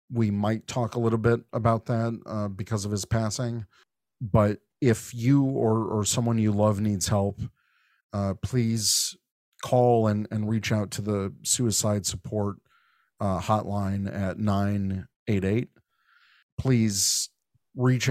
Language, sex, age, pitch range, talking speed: English, male, 40-59, 100-115 Hz, 135 wpm